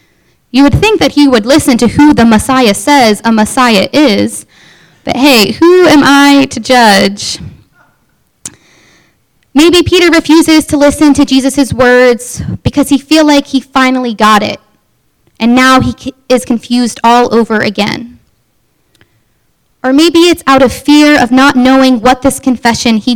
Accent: American